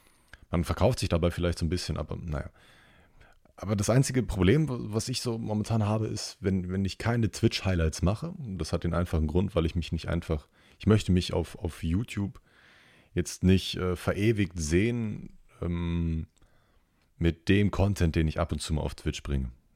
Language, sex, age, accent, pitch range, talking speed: German, male, 30-49, German, 75-95 Hz, 185 wpm